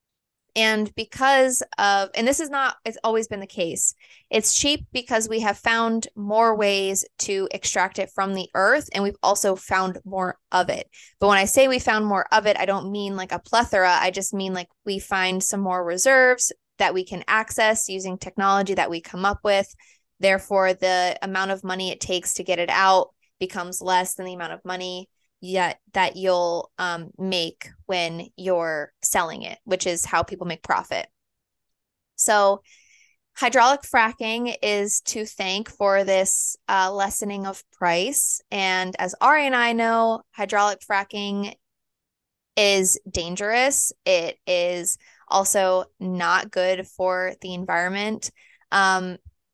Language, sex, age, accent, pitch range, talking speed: English, female, 20-39, American, 185-215 Hz, 160 wpm